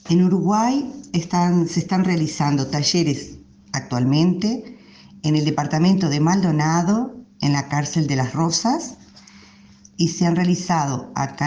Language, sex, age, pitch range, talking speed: Spanish, female, 50-69, 135-175 Hz, 120 wpm